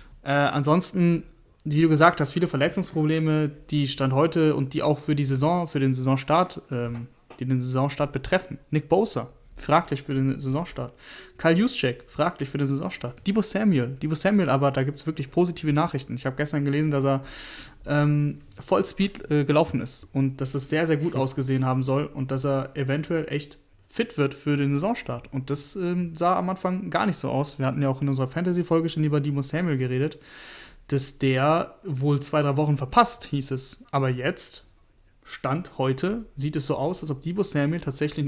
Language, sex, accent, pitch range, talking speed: German, male, German, 135-160 Hz, 190 wpm